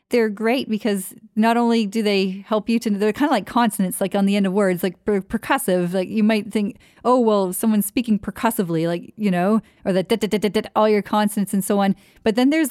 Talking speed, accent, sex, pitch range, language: 220 wpm, American, female, 195-230 Hz, English